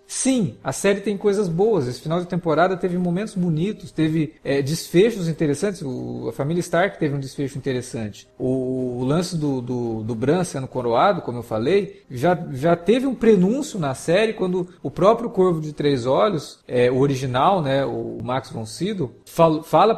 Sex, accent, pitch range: male, Brazilian, 130-175 Hz